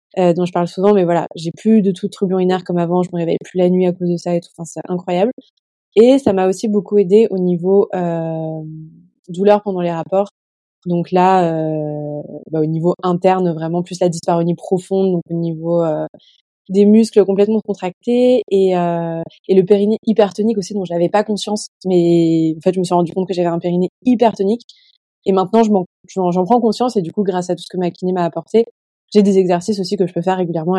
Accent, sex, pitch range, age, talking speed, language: French, female, 175-205 Hz, 20-39, 230 wpm, French